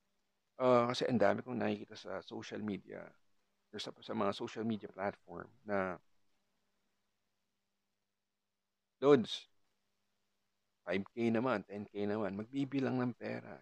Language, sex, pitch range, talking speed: Filipino, male, 100-115 Hz, 110 wpm